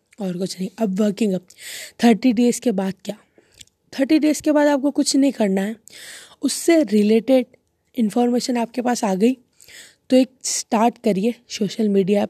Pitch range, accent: 200-245 Hz, native